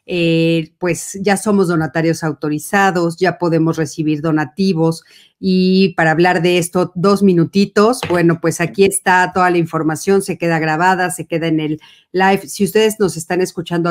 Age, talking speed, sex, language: 40-59, 160 wpm, female, Spanish